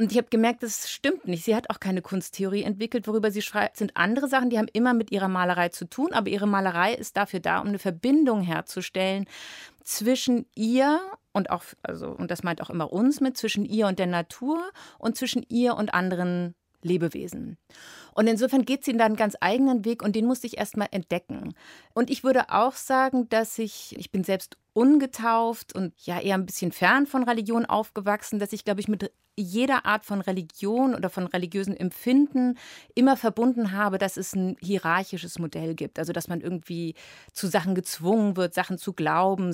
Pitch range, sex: 185-240 Hz, female